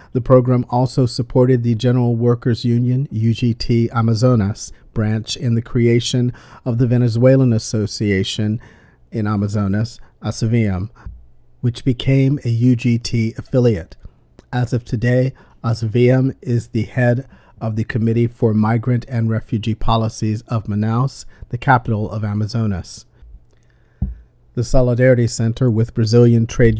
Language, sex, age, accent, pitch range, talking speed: English, male, 50-69, American, 110-125 Hz, 120 wpm